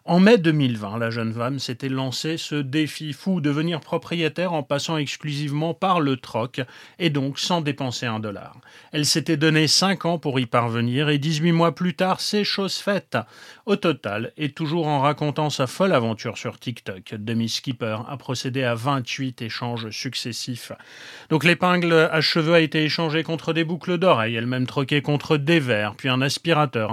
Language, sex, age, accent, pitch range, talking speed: French, male, 30-49, French, 125-160 Hz, 175 wpm